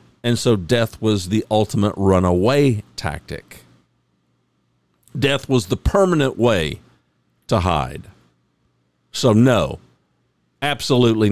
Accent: American